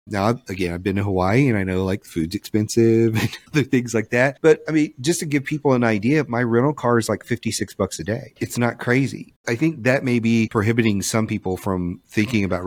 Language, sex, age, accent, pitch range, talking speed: English, male, 40-59, American, 95-120 Hz, 230 wpm